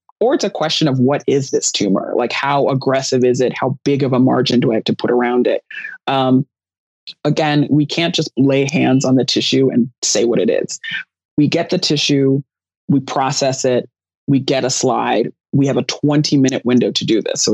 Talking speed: 210 wpm